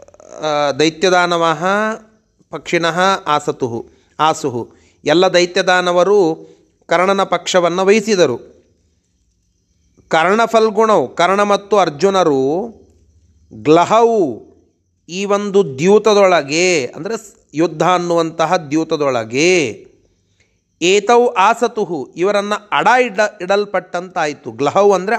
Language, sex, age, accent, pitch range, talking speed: Kannada, male, 40-59, native, 145-200 Hz, 70 wpm